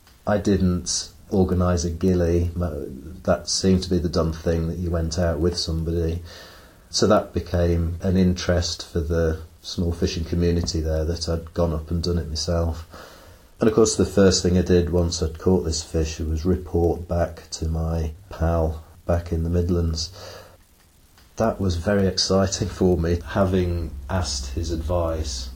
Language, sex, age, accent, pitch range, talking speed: English, male, 30-49, British, 85-90 Hz, 165 wpm